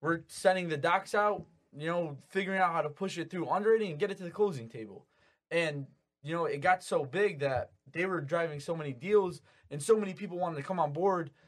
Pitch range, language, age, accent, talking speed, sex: 140-175 Hz, English, 20-39, American, 235 wpm, male